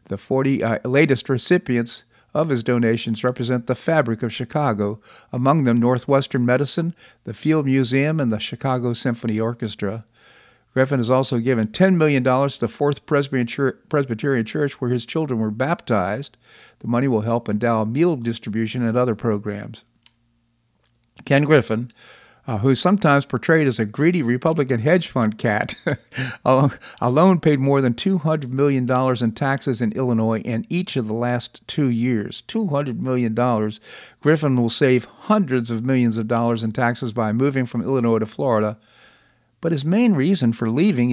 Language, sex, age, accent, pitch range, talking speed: English, male, 50-69, American, 115-140 Hz, 155 wpm